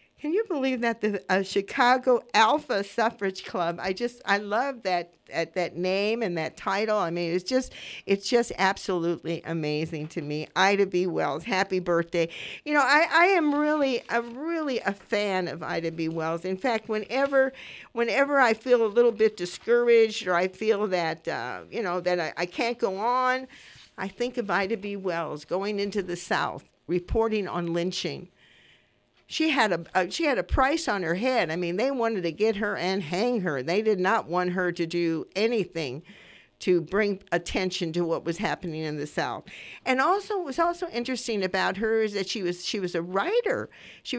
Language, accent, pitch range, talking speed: English, American, 175-240 Hz, 190 wpm